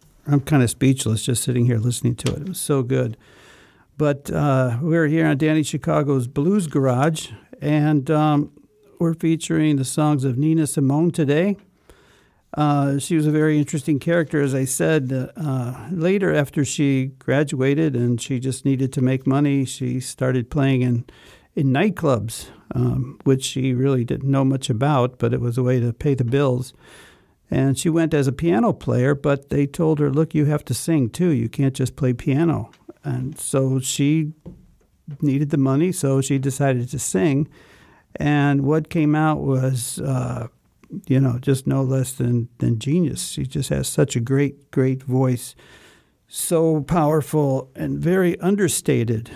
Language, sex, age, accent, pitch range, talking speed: German, male, 60-79, American, 130-155 Hz, 170 wpm